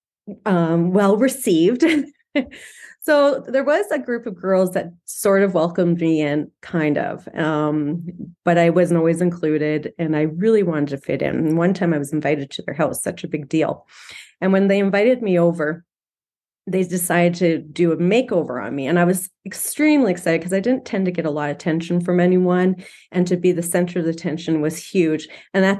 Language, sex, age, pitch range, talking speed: English, female, 30-49, 165-205 Hz, 200 wpm